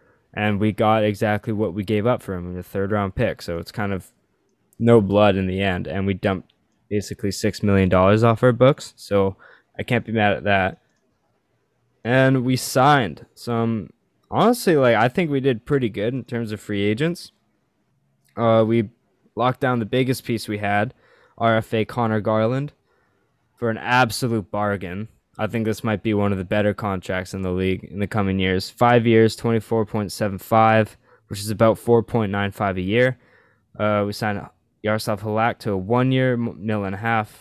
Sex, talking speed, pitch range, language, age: male, 180 wpm, 100-120 Hz, English, 10-29